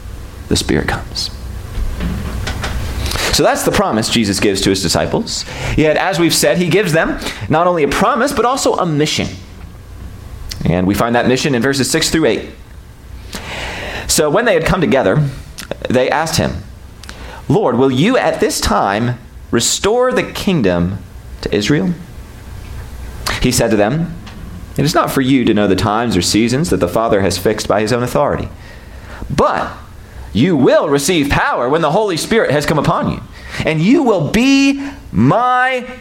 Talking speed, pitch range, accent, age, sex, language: 165 wpm, 95-140 Hz, American, 30-49, male, English